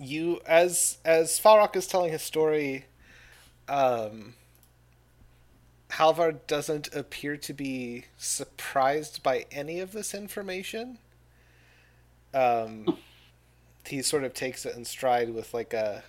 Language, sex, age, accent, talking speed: English, male, 30-49, American, 115 wpm